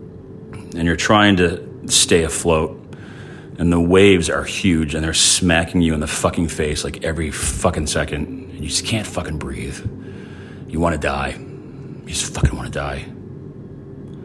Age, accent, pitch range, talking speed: 40-59, American, 75-90 Hz, 165 wpm